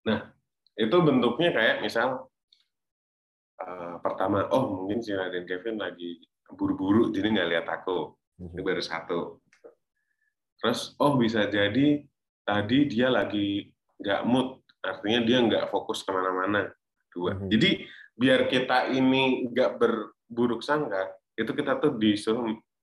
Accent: native